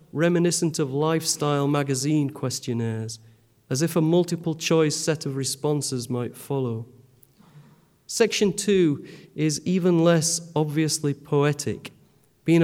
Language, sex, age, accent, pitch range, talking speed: English, male, 40-59, British, 130-160 Hz, 105 wpm